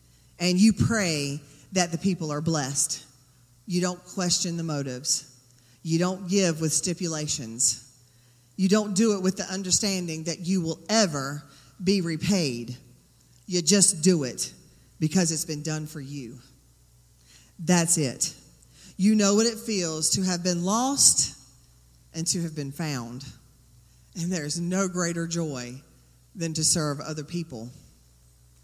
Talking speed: 140 wpm